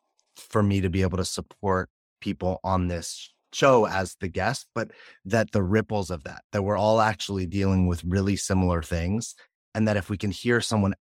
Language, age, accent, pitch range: English, 30-49, American, 90-110 Hz